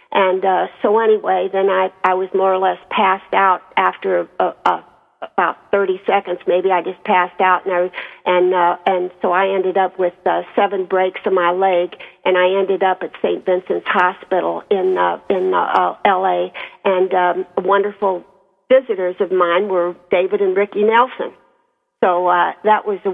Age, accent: 50-69, American